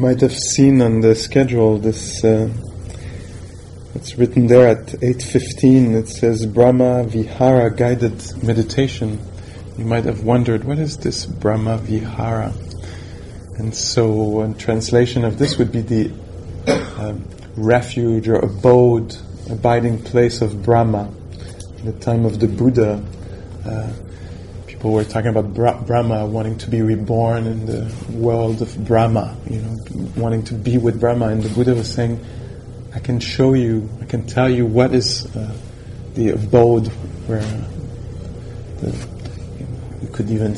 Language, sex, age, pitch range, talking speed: English, male, 20-39, 110-120 Hz, 150 wpm